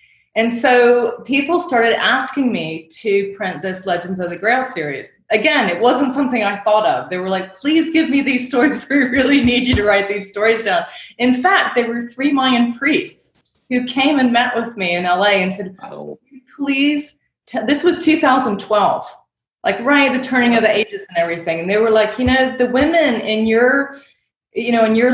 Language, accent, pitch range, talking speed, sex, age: English, American, 200-270 Hz, 195 wpm, female, 30-49